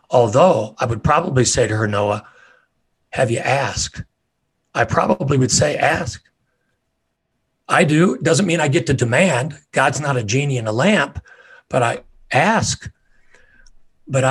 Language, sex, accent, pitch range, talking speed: English, male, American, 115-145 Hz, 150 wpm